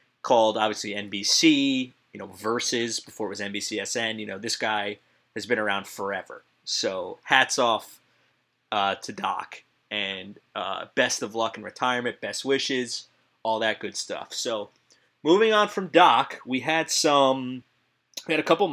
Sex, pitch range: male, 110-150 Hz